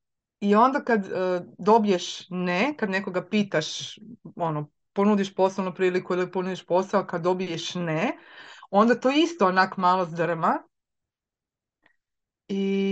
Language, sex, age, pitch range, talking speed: Croatian, female, 30-49, 175-230 Hz, 120 wpm